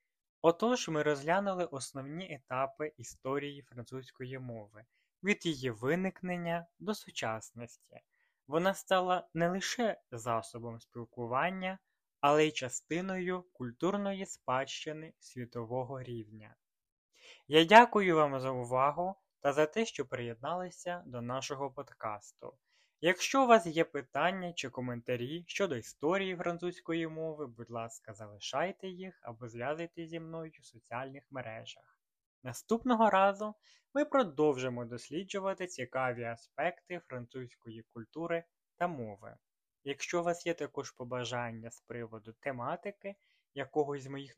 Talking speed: 115 wpm